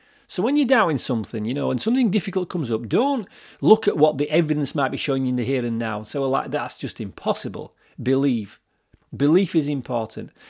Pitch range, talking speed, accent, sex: 110-140 Hz, 210 wpm, British, male